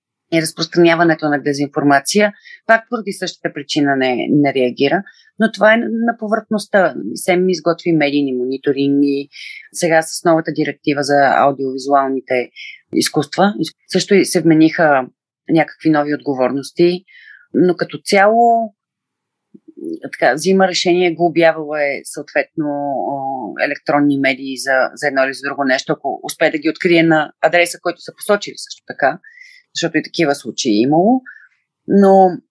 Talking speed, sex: 135 wpm, female